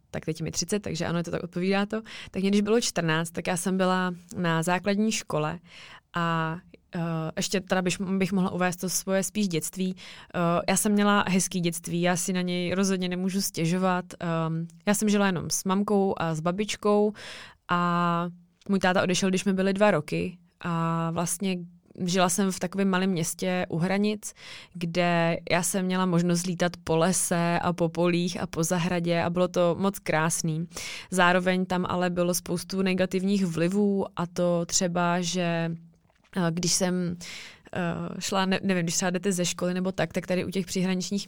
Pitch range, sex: 170-190 Hz, female